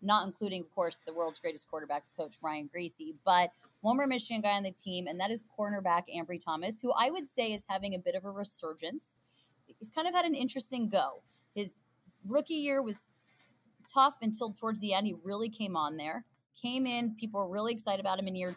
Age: 20-39